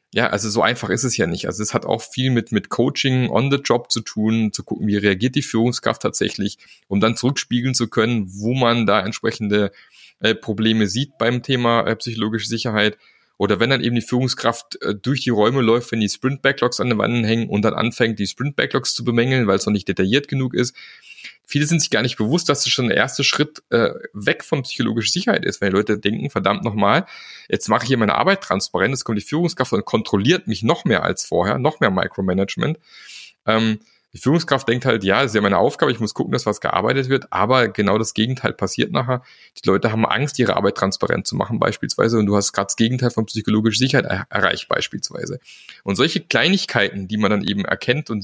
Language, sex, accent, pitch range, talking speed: German, male, German, 105-125 Hz, 220 wpm